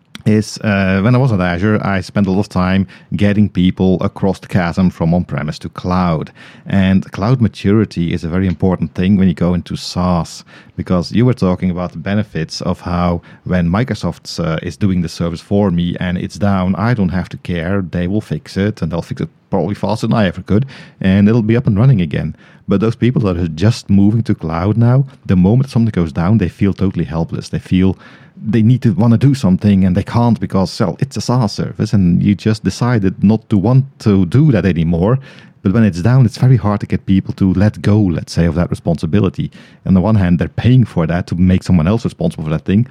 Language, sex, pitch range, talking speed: English, male, 90-110 Hz, 230 wpm